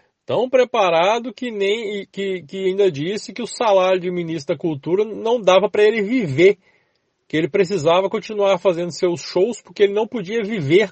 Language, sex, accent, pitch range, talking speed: Portuguese, male, Brazilian, 140-215 Hz, 175 wpm